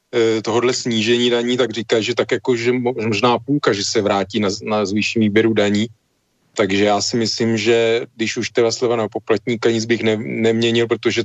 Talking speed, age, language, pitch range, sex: 185 wpm, 40-59, Slovak, 110-125 Hz, male